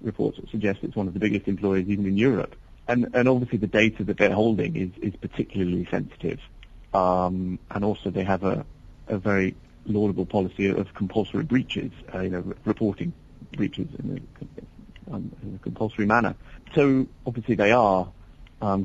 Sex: male